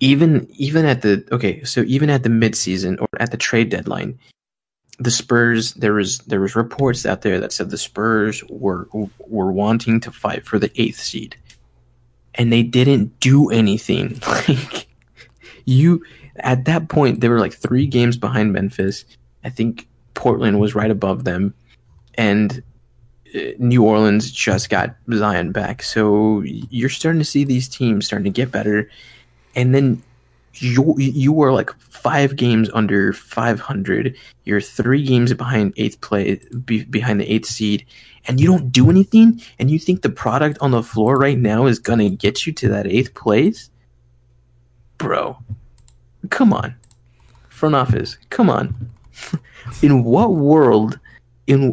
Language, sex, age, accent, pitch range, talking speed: English, male, 20-39, American, 105-130 Hz, 160 wpm